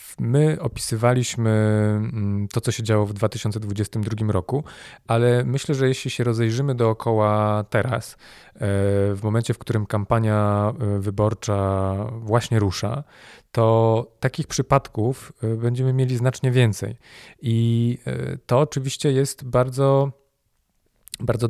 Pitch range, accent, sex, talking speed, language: 105-125 Hz, native, male, 105 wpm, Polish